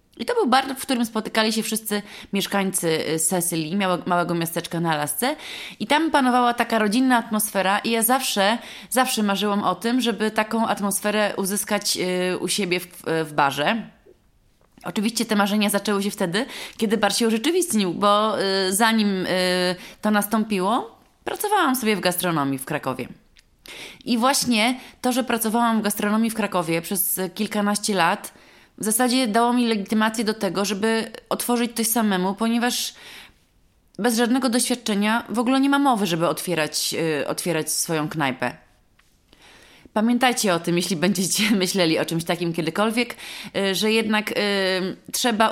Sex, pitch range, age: female, 180-225 Hz, 20-39